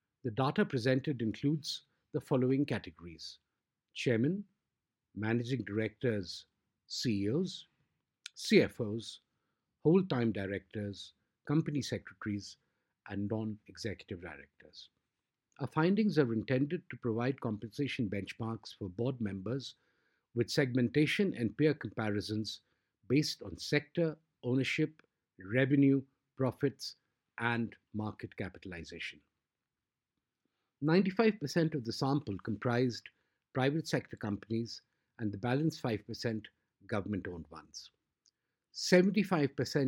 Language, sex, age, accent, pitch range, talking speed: English, male, 50-69, Indian, 110-145 Hz, 90 wpm